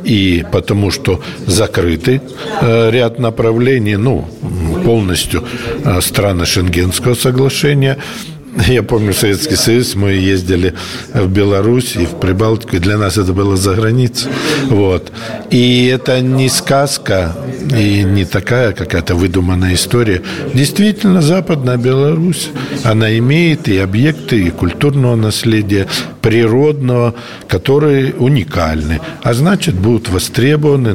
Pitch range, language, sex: 95-135 Hz, Russian, male